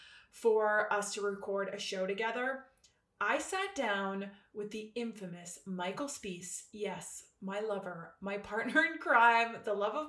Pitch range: 205-275 Hz